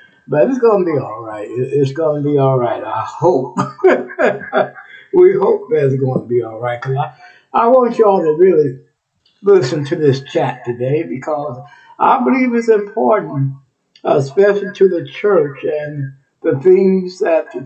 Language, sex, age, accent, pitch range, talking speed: English, male, 60-79, American, 145-245 Hz, 170 wpm